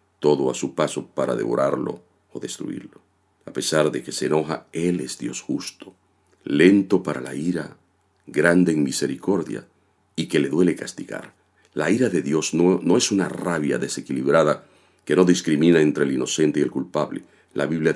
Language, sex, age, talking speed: Spanish, male, 50-69, 170 wpm